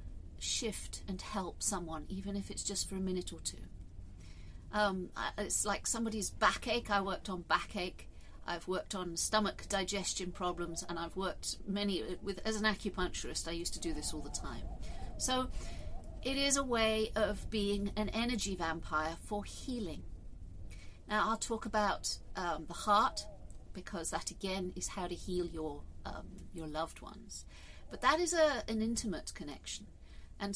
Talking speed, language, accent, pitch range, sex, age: 165 wpm, English, British, 145-210 Hz, female, 50-69